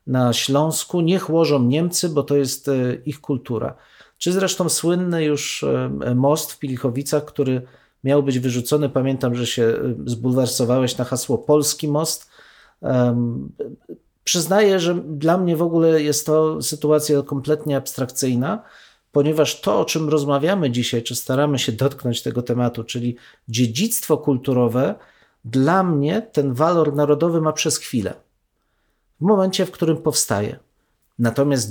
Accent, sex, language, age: native, male, Polish, 40-59